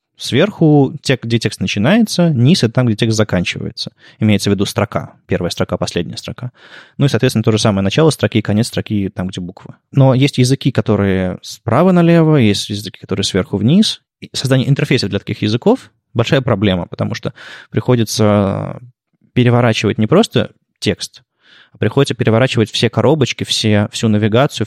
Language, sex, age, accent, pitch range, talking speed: Russian, male, 20-39, native, 105-130 Hz, 160 wpm